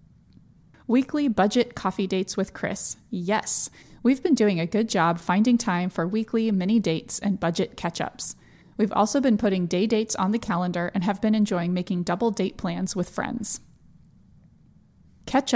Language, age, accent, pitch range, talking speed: English, 20-39, American, 185-225 Hz, 160 wpm